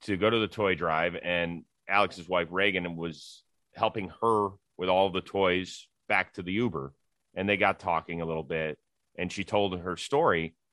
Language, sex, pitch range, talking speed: English, male, 80-105 Hz, 185 wpm